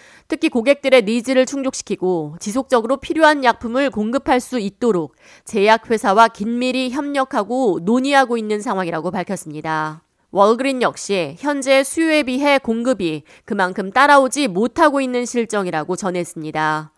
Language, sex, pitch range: Korean, female, 185-270 Hz